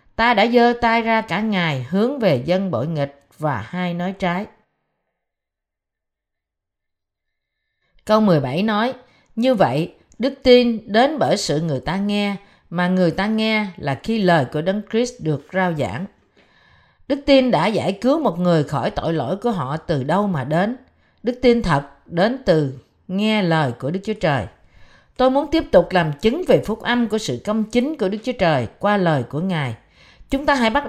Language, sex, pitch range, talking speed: Vietnamese, female, 160-225 Hz, 185 wpm